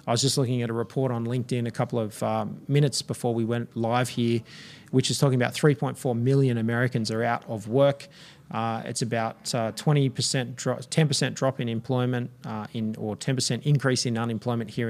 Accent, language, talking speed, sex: Australian, English, 195 wpm, male